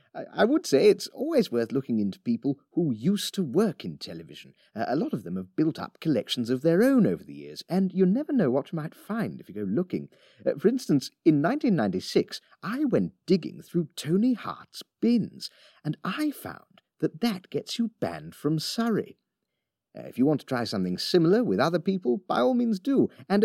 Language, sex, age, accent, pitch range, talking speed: English, male, 40-59, British, 135-225 Hz, 205 wpm